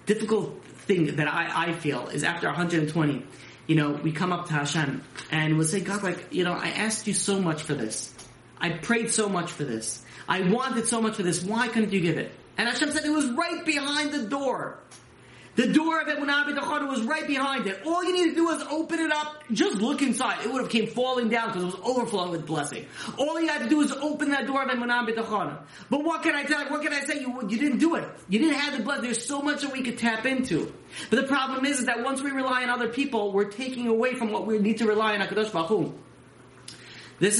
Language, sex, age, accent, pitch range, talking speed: English, male, 30-49, American, 175-265 Hz, 245 wpm